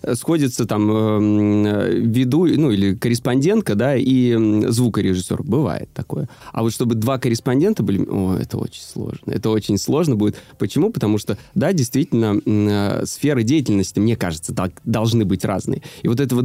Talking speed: 145 wpm